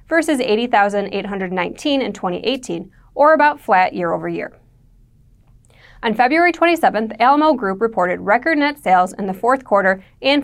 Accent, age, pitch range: American, 20-39, 190-270 Hz